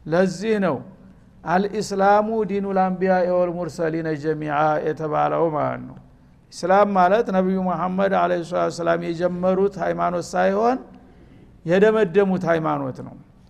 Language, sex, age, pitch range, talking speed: Amharic, male, 60-79, 180-215 Hz, 100 wpm